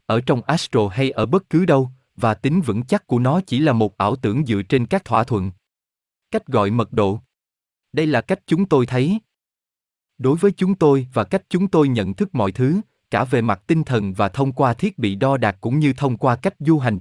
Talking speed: 230 wpm